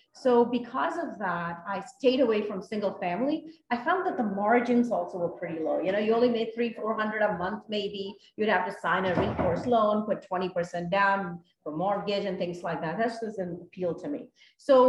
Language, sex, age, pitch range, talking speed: English, female, 40-59, 185-235 Hz, 215 wpm